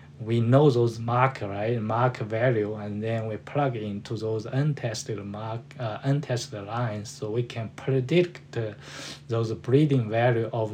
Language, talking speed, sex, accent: English, 150 wpm, male, Japanese